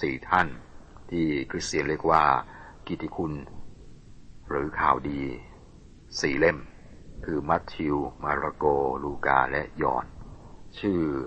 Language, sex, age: Thai, male, 60-79